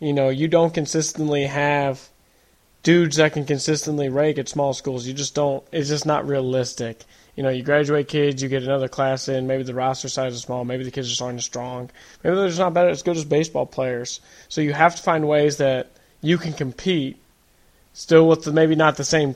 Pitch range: 130-150 Hz